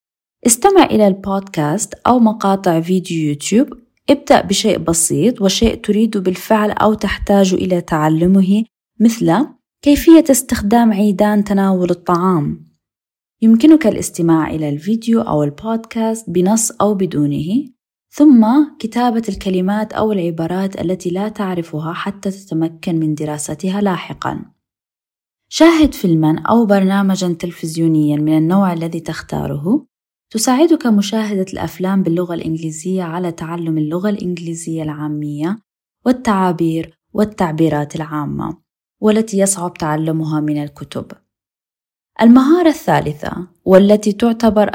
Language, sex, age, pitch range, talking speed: Arabic, female, 20-39, 165-220 Hz, 100 wpm